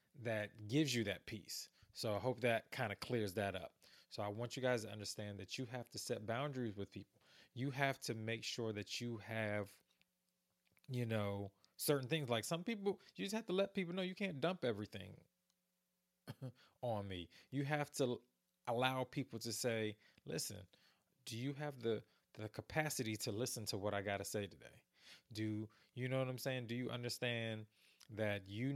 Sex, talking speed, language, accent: male, 190 wpm, English, American